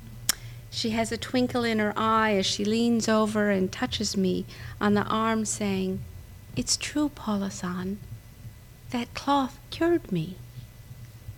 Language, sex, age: English, female, 50-69